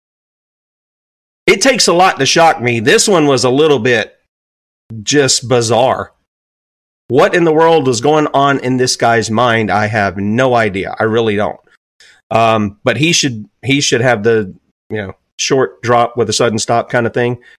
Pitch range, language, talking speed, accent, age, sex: 115-175 Hz, English, 175 wpm, American, 40-59, male